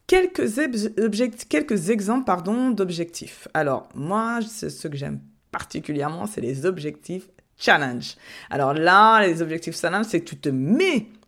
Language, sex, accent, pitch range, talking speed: French, female, French, 140-210 Hz, 145 wpm